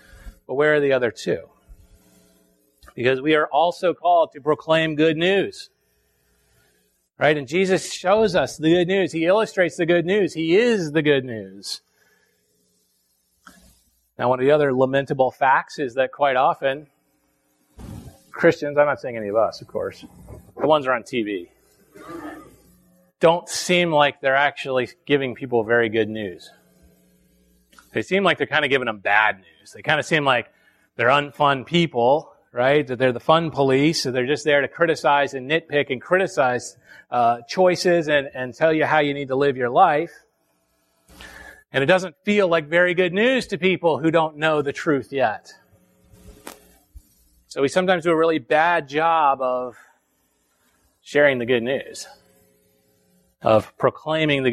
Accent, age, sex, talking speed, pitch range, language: American, 30-49, male, 160 wpm, 110-165 Hz, English